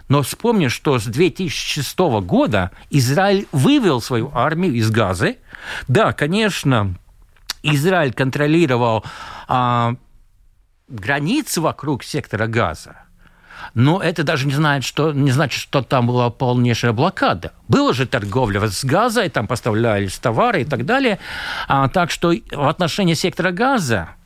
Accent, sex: native, male